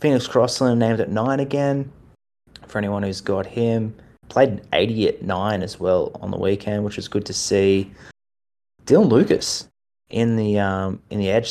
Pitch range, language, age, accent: 95-125 Hz, English, 20-39, Australian